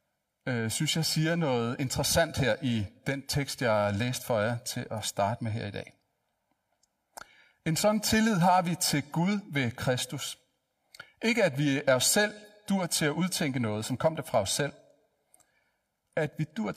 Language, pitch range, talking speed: Danish, 125-175 Hz, 180 wpm